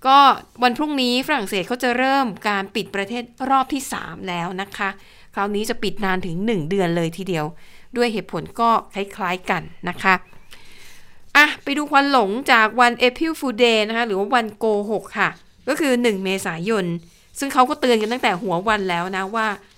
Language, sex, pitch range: Thai, female, 195-250 Hz